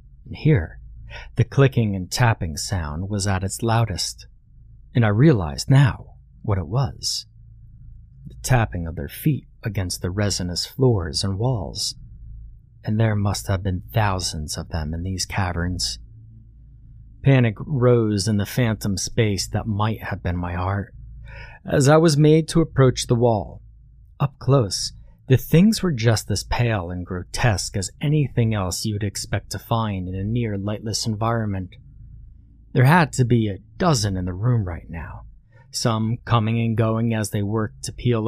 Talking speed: 155 wpm